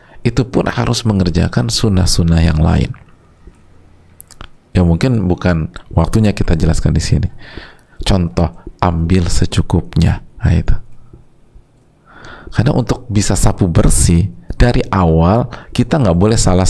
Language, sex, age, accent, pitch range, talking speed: Indonesian, male, 50-69, native, 85-115 Hz, 110 wpm